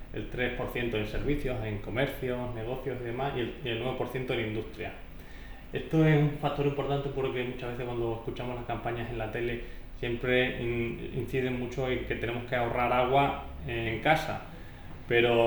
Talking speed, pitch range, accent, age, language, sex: 160 wpm, 115-130 Hz, Spanish, 30-49, Spanish, male